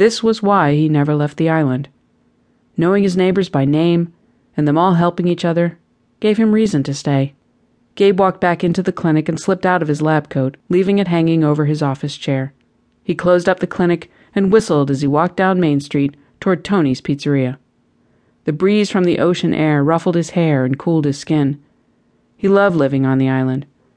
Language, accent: English, American